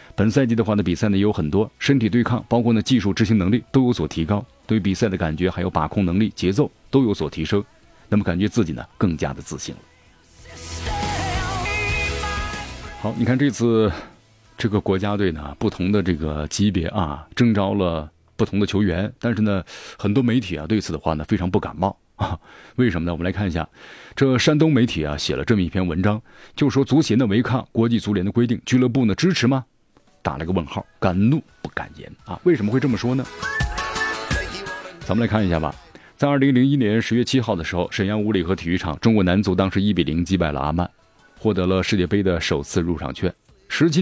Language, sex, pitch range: Chinese, male, 90-120 Hz